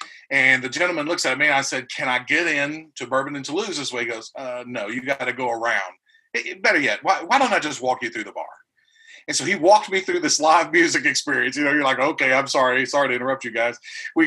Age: 40-59